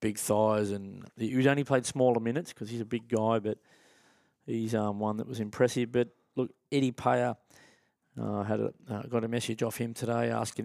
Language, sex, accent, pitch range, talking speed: English, male, Australian, 110-125 Hz, 185 wpm